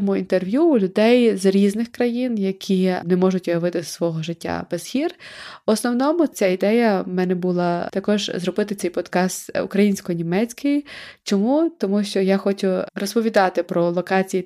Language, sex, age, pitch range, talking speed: Ukrainian, female, 20-39, 180-220 Hz, 145 wpm